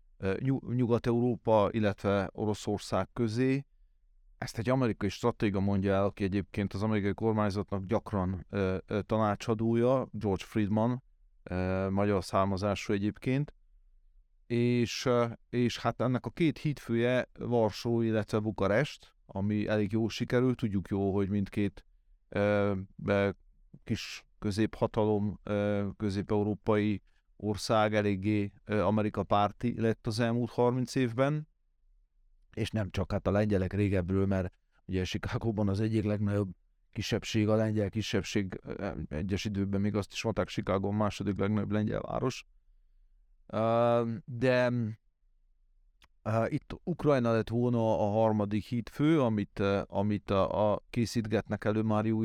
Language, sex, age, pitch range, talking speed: Hungarian, male, 40-59, 100-115 Hz, 120 wpm